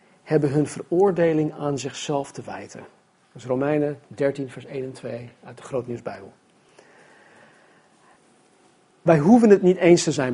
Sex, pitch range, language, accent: male, 140-175 Hz, Dutch, Dutch